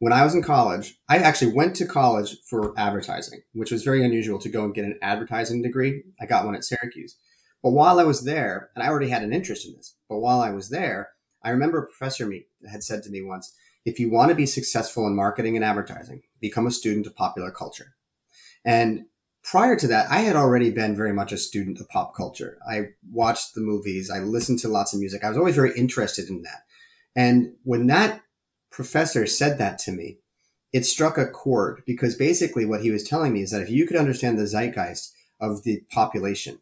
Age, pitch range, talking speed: 30-49, 105-125 Hz, 220 wpm